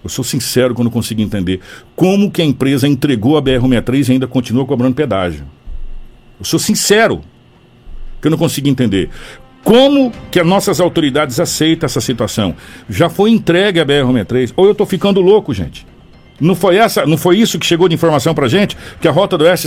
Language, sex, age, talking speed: Portuguese, male, 60-79, 200 wpm